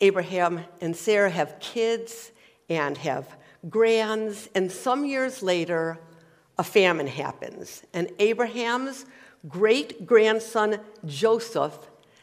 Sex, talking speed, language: female, 95 wpm, English